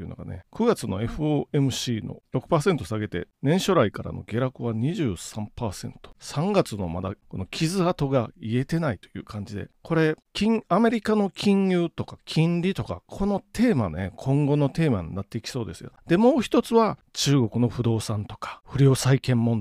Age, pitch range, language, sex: 40-59, 115-175 Hz, Japanese, male